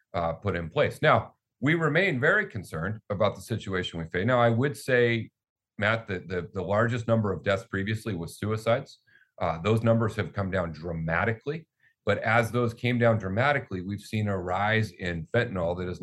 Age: 40-59